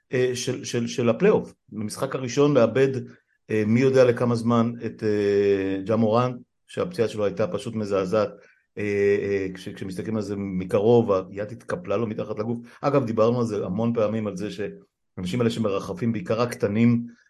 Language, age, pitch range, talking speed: Hebrew, 50-69, 100-120 Hz, 145 wpm